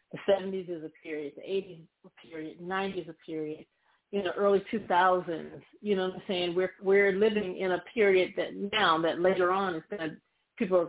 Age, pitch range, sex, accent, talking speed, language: 30-49, 165-200 Hz, female, American, 210 wpm, English